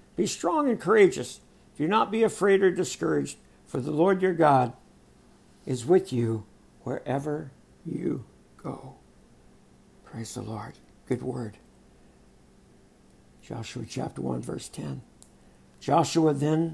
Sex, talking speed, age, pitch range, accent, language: male, 120 wpm, 60-79, 130-175 Hz, American, English